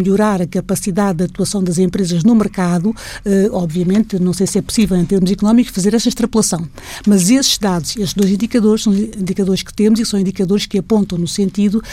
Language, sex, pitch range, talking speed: Portuguese, female, 185-210 Hz, 190 wpm